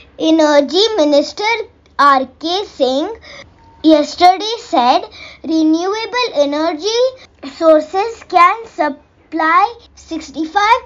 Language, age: English, 20-39